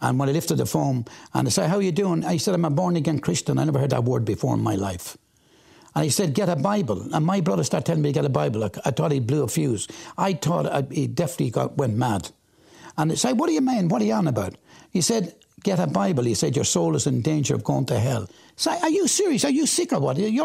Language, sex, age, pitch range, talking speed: English, male, 60-79, 130-180 Hz, 290 wpm